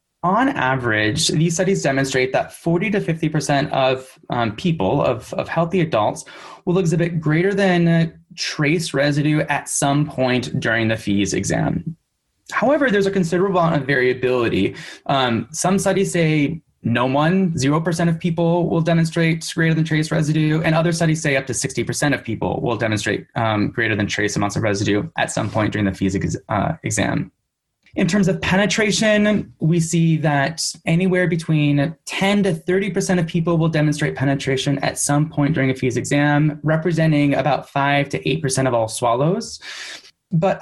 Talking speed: 170 wpm